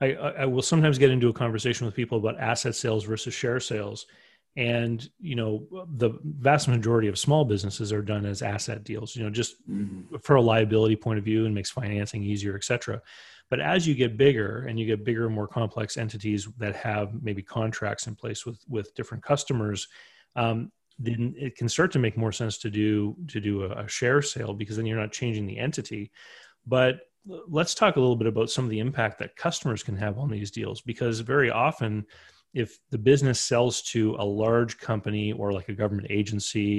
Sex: male